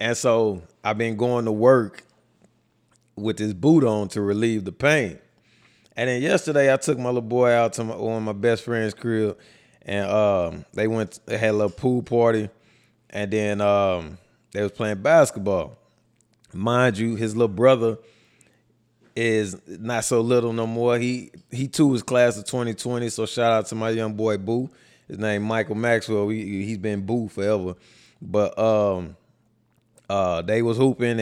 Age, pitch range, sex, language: 20-39, 105-125 Hz, male, English